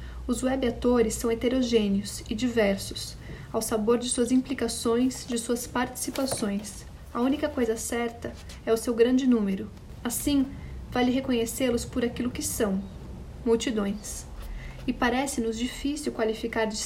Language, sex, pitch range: Portuguese, female, 225-255 Hz